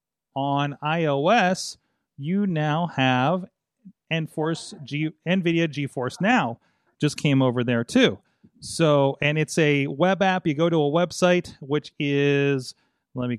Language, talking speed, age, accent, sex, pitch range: English, 135 wpm, 30-49, American, male, 130-155 Hz